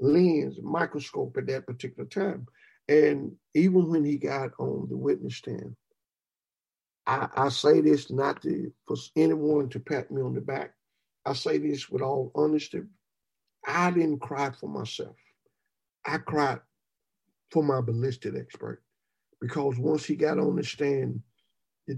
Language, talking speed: English, 145 wpm